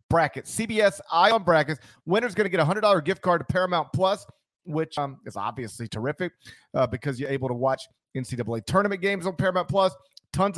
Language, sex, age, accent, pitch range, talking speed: English, male, 40-59, American, 165-215 Hz, 200 wpm